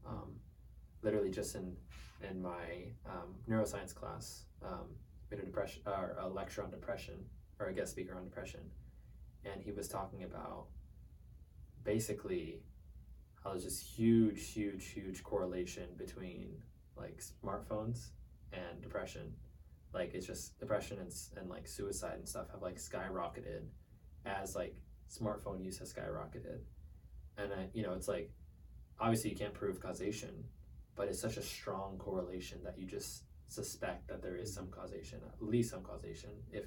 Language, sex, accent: English, male, American